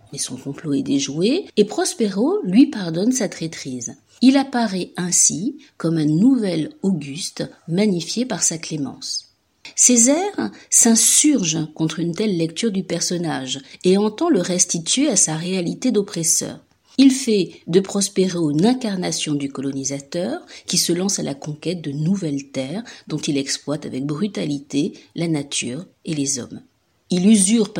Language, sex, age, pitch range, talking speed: French, female, 50-69, 155-220 Hz, 145 wpm